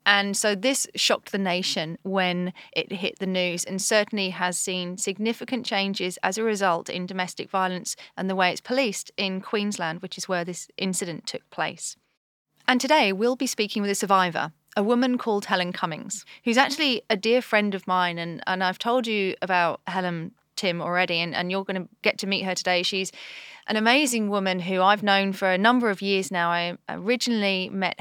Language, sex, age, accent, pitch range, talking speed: English, female, 30-49, British, 180-210 Hz, 195 wpm